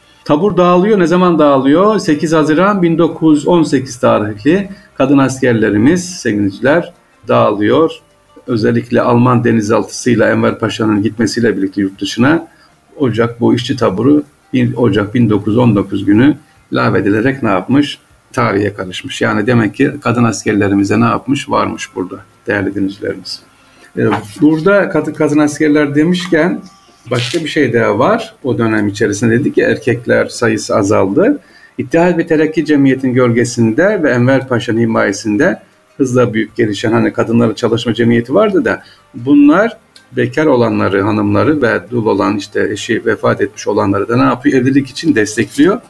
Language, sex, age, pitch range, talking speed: Turkish, male, 50-69, 110-150 Hz, 130 wpm